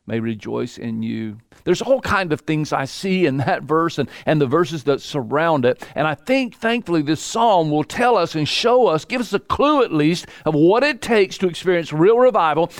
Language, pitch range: English, 140-200 Hz